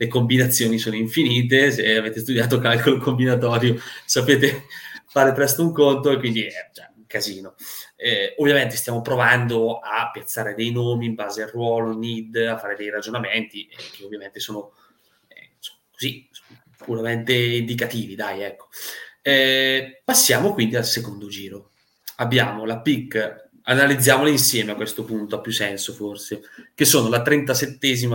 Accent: native